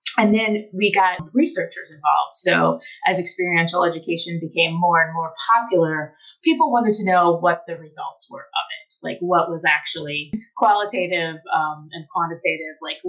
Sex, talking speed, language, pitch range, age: female, 155 wpm, English, 160-205 Hz, 30-49